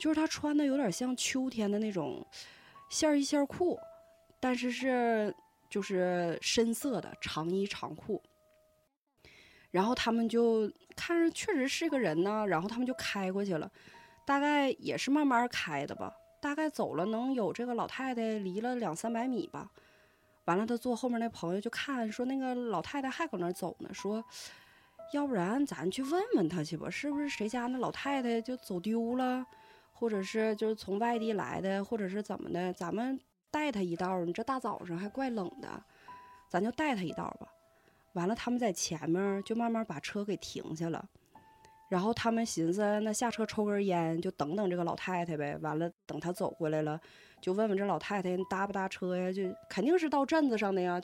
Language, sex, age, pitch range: Chinese, female, 20-39, 185-270 Hz